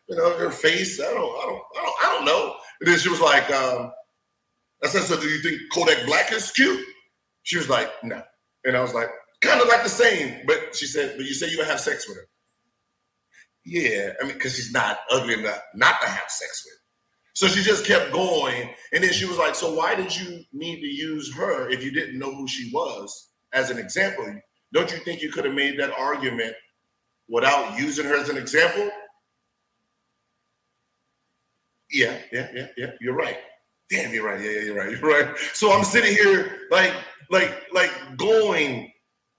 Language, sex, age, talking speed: English, male, 40-59, 205 wpm